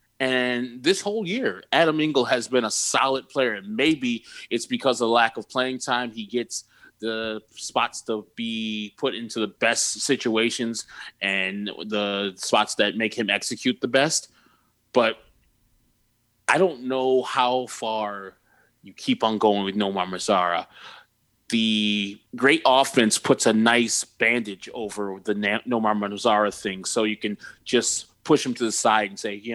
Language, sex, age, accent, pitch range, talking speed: English, male, 20-39, American, 105-125 Hz, 160 wpm